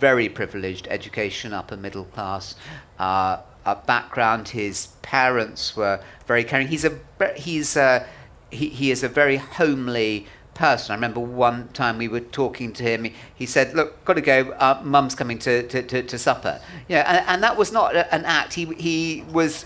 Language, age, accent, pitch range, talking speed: English, 50-69, British, 120-145 Hz, 185 wpm